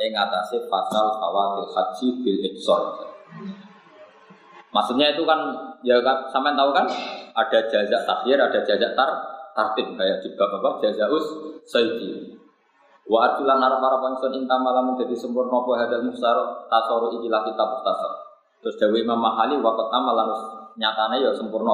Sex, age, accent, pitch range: male, 20-39, native, 110-135 Hz